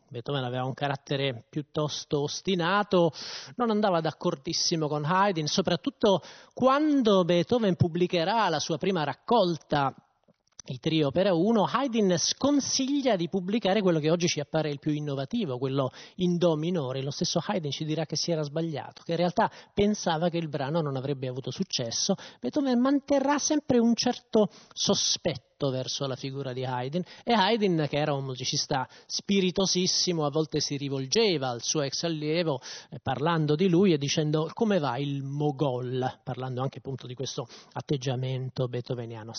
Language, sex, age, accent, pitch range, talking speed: Italian, male, 30-49, native, 135-190 Hz, 155 wpm